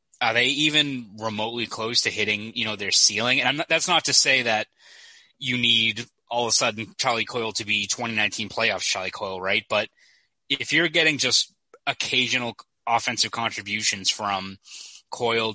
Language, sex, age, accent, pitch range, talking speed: English, male, 20-39, American, 105-125 Hz, 170 wpm